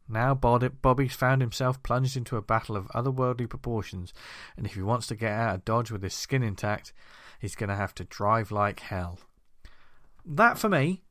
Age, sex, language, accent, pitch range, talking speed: 40-59, male, English, British, 110-135 Hz, 190 wpm